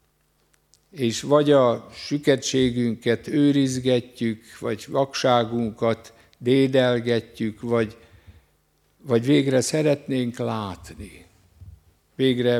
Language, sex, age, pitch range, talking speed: Hungarian, male, 60-79, 105-130 Hz, 65 wpm